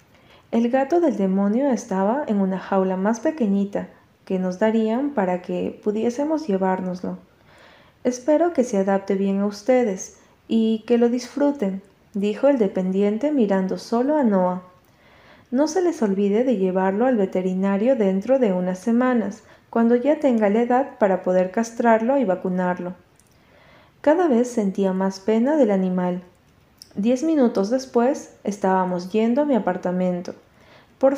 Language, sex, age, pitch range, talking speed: Spanish, female, 30-49, 190-255 Hz, 140 wpm